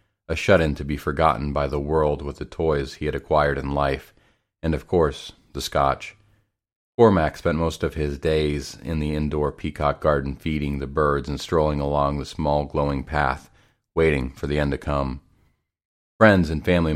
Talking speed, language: 185 wpm, English